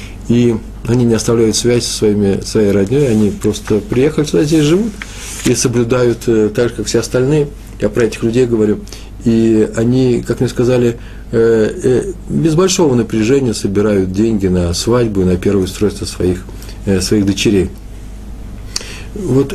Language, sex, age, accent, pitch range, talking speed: Russian, male, 40-59, native, 100-115 Hz, 140 wpm